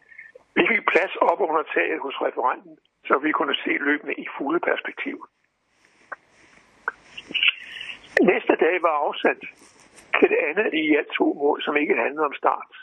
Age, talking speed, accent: 60-79, 155 wpm, native